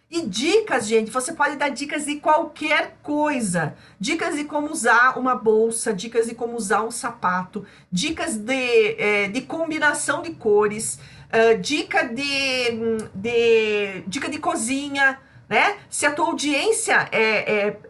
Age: 50-69